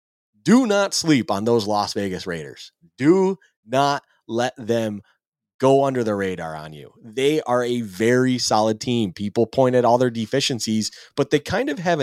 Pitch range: 110-150 Hz